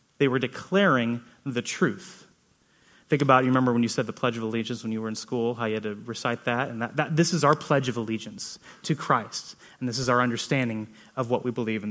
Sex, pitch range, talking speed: male, 120-150 Hz, 240 wpm